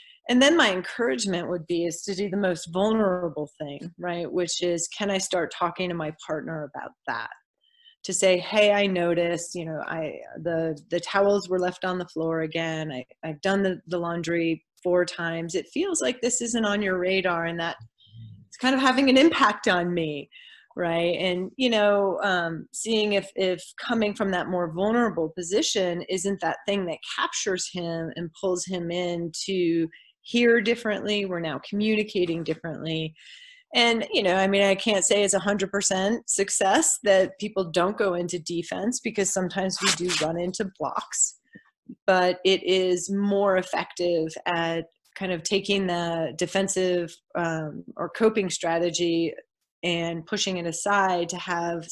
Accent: American